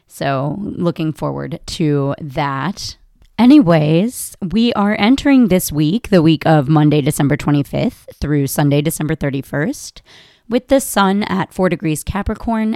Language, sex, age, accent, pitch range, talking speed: English, female, 30-49, American, 150-200 Hz, 130 wpm